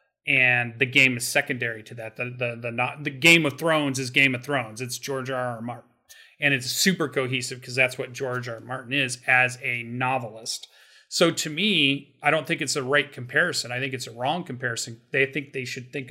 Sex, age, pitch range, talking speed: male, 30-49, 125-145 Hz, 225 wpm